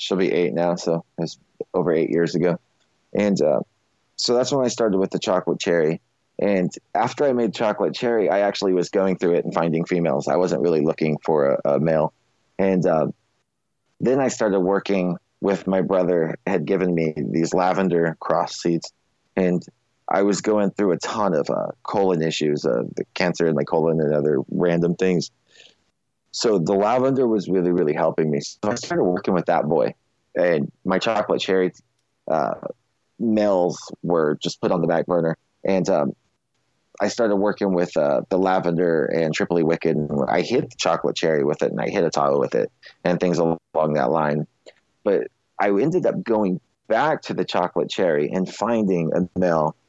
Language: English